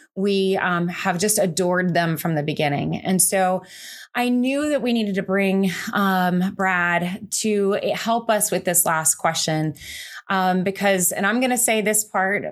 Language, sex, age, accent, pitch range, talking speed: English, female, 20-39, American, 170-205 Hz, 170 wpm